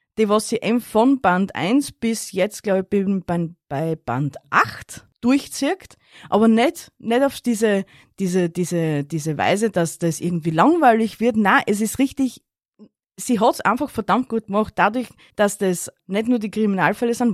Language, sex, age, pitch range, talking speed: German, female, 20-39, 175-225 Hz, 165 wpm